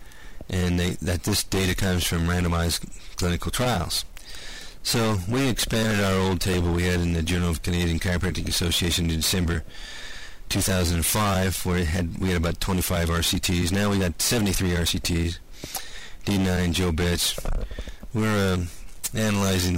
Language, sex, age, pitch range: English, male, 40-59, 85-100 Hz